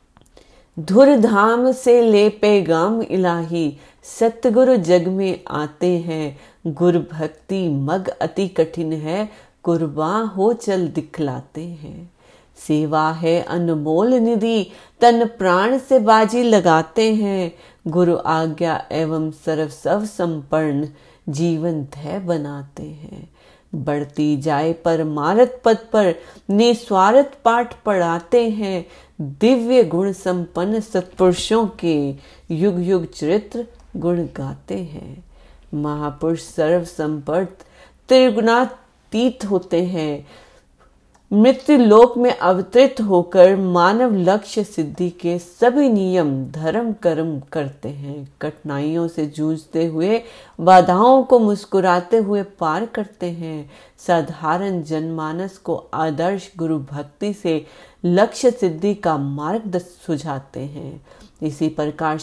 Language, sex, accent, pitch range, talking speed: Hindi, female, native, 160-210 Hz, 105 wpm